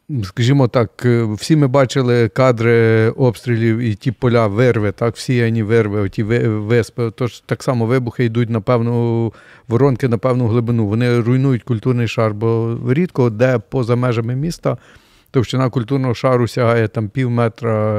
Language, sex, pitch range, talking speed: Ukrainian, male, 115-130 Hz, 150 wpm